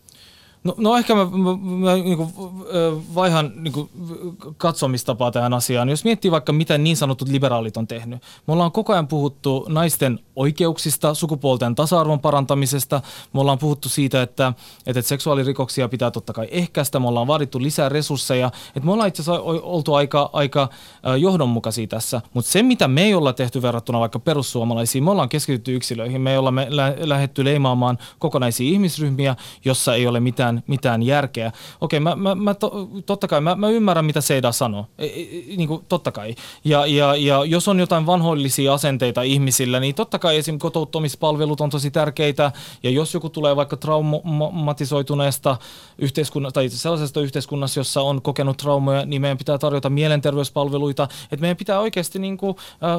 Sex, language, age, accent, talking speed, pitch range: male, Finnish, 20-39, native, 165 wpm, 135-165 Hz